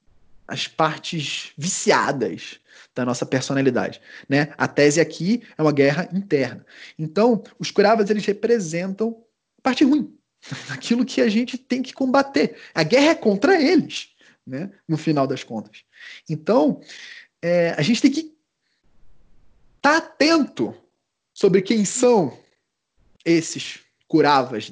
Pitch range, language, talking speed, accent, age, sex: 150-245 Hz, Portuguese, 120 wpm, Brazilian, 20-39, male